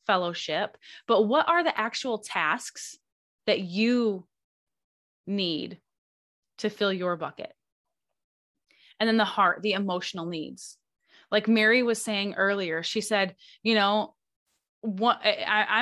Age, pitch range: 20-39, 185-235 Hz